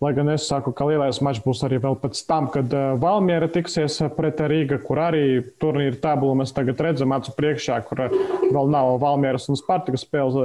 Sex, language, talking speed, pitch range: male, English, 185 wpm, 130-150 Hz